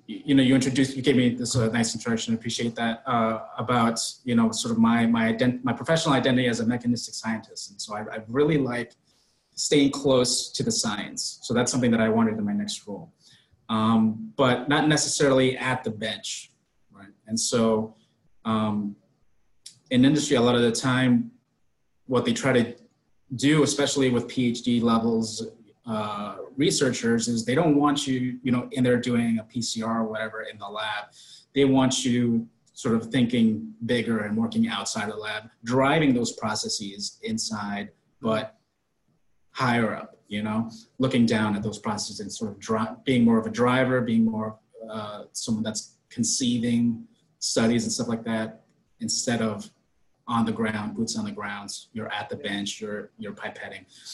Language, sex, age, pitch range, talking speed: English, male, 20-39, 110-130 Hz, 175 wpm